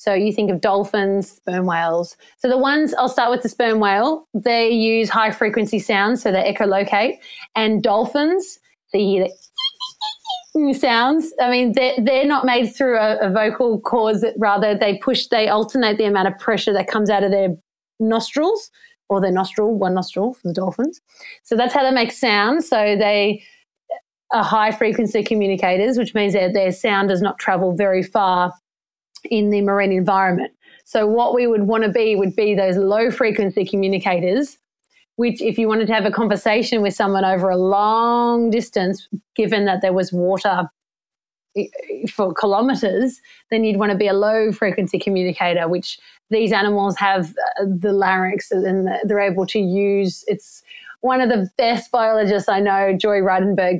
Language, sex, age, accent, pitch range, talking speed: English, female, 30-49, Australian, 195-235 Hz, 165 wpm